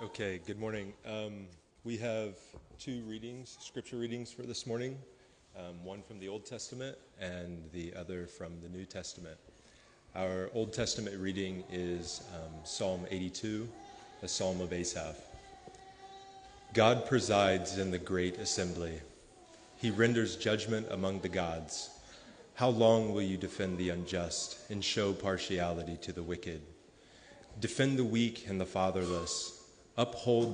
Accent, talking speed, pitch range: American, 140 wpm, 90-110 Hz